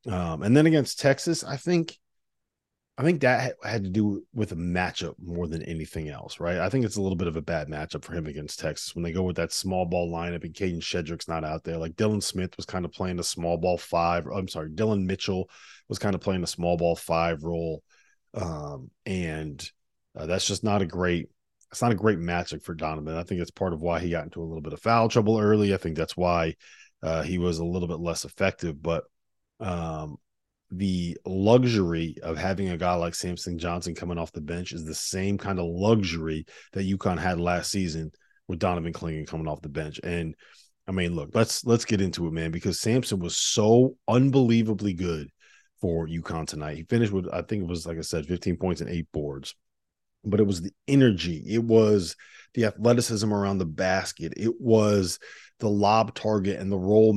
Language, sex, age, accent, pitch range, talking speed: English, male, 30-49, American, 85-105 Hz, 215 wpm